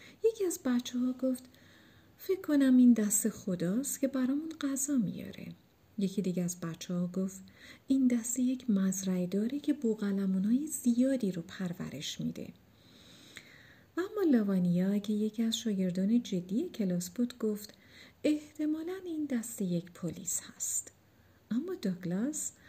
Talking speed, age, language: 130 wpm, 40-59, Persian